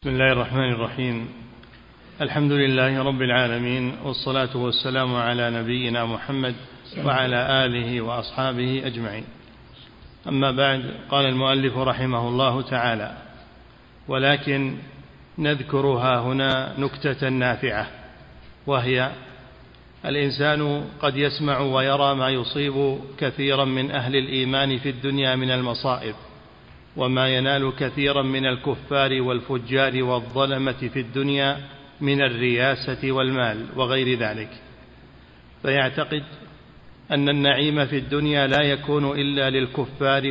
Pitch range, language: 125-140 Hz, Arabic